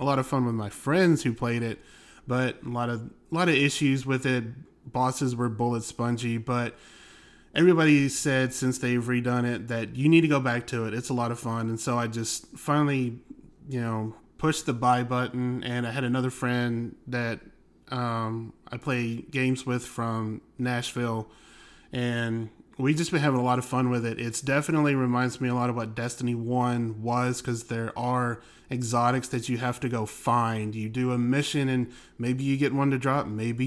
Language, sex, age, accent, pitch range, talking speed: English, male, 20-39, American, 120-130 Hz, 200 wpm